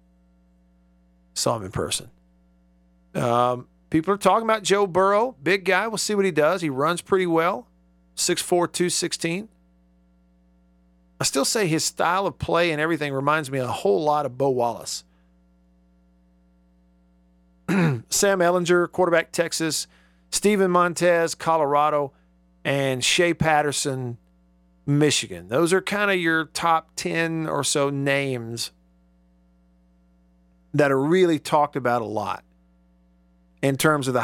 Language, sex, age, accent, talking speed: English, male, 50-69, American, 130 wpm